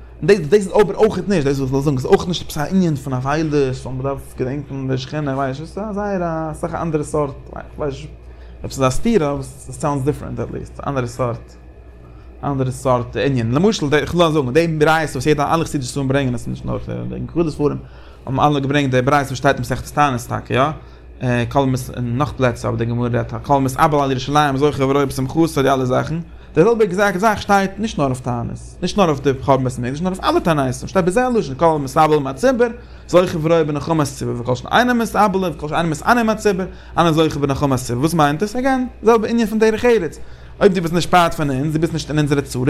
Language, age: English, 20-39